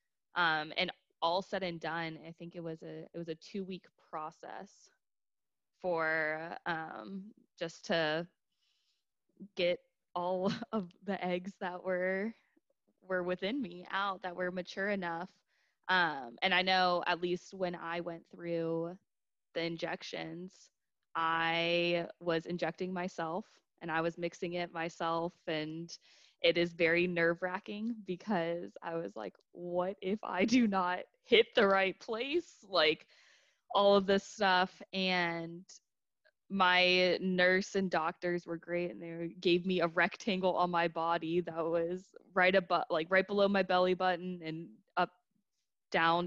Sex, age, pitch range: female, 20-39, 165-185 Hz